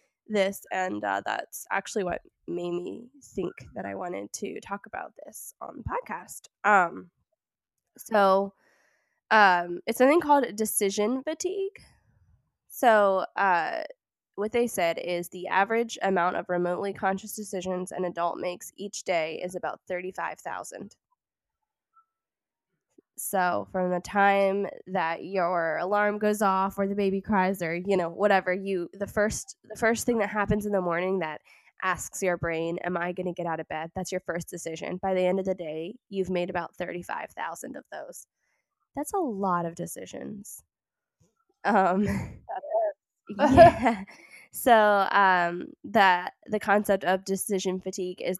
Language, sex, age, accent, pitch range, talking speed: English, female, 10-29, American, 180-215 Hz, 150 wpm